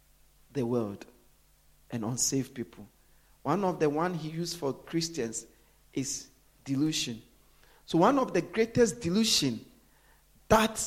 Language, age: English, 50-69